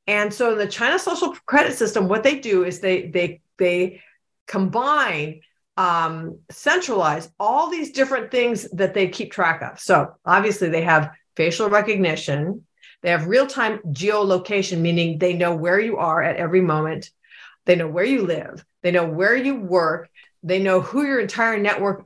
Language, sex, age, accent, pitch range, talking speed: English, female, 50-69, American, 175-235 Hz, 170 wpm